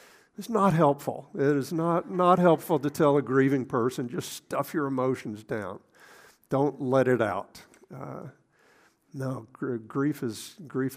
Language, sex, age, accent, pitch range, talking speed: English, male, 50-69, American, 120-155 Hz, 155 wpm